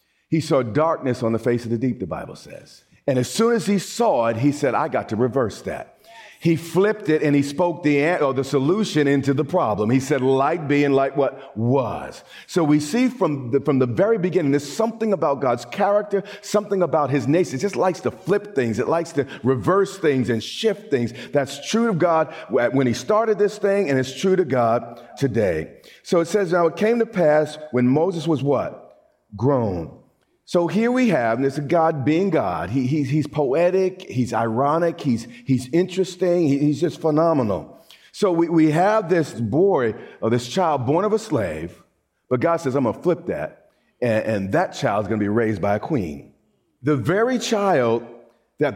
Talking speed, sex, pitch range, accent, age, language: 200 wpm, male, 130-185 Hz, American, 50-69, English